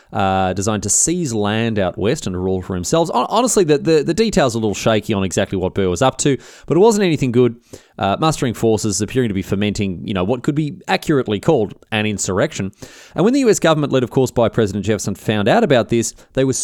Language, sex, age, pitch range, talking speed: English, male, 30-49, 100-140 Hz, 235 wpm